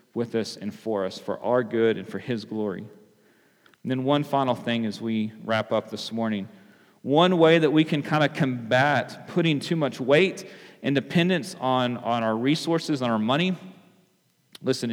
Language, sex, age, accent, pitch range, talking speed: English, male, 40-59, American, 125-155 Hz, 180 wpm